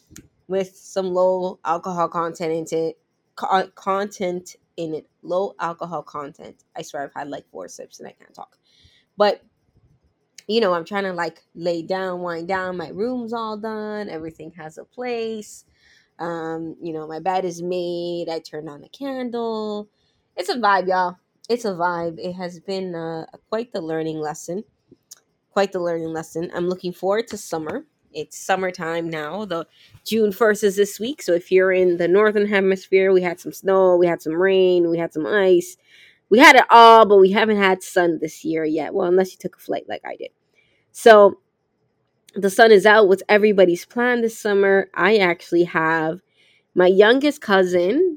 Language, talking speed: English, 175 wpm